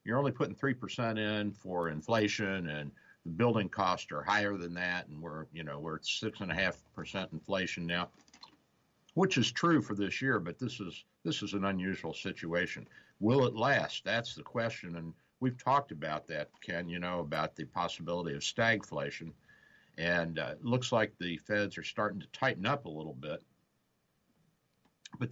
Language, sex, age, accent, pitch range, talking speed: English, male, 60-79, American, 80-105 Hz, 180 wpm